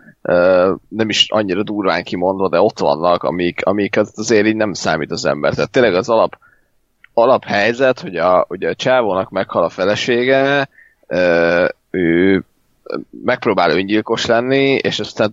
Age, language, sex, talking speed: 30-49, Hungarian, male, 135 wpm